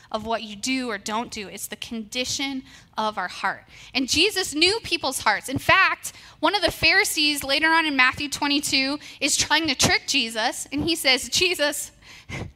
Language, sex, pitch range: English, female, 230-310 Hz